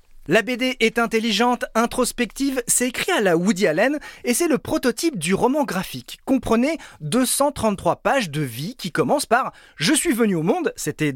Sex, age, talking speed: male, 30-49, 185 wpm